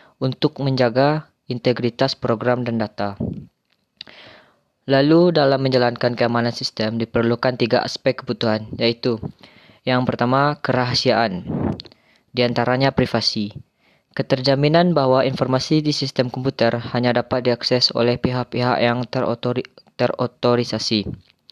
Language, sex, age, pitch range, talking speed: Indonesian, female, 20-39, 120-135 Hz, 100 wpm